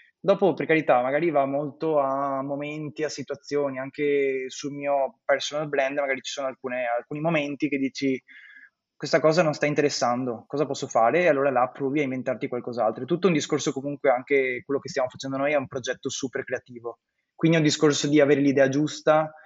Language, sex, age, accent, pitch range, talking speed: Italian, male, 20-39, native, 135-150 Hz, 190 wpm